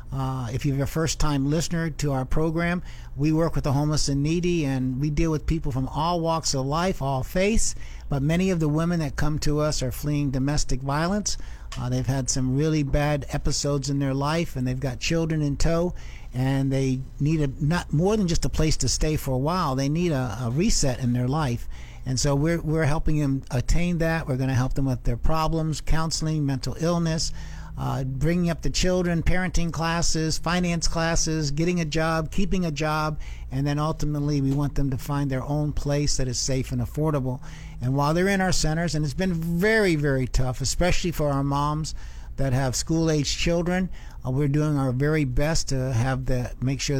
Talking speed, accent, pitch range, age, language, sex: 205 wpm, American, 130-160 Hz, 60-79, English, male